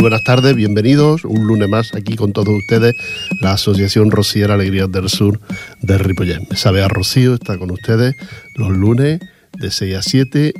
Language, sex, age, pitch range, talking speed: Portuguese, male, 40-59, 95-110 Hz, 165 wpm